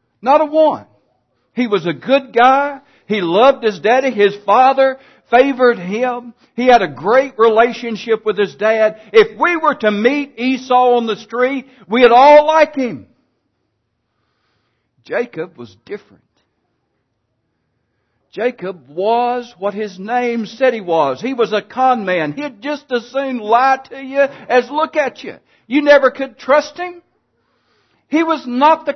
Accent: American